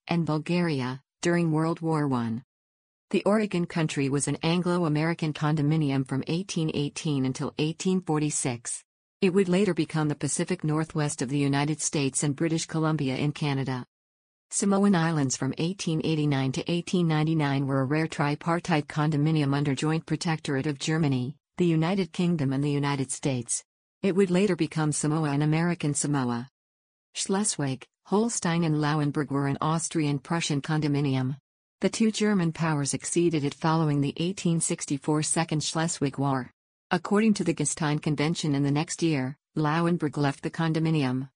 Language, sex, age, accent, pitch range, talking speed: English, female, 50-69, American, 140-170 Hz, 140 wpm